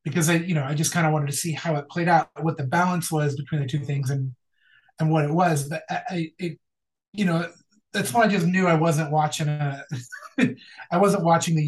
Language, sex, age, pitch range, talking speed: English, male, 30-49, 150-180 Hz, 240 wpm